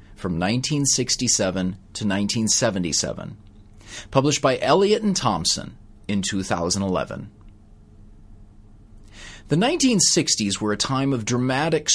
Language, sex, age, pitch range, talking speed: English, male, 30-49, 105-145 Hz, 90 wpm